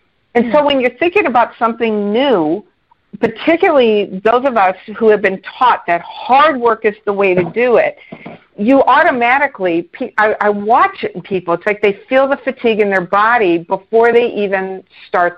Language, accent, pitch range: English, American, 185-245 Hz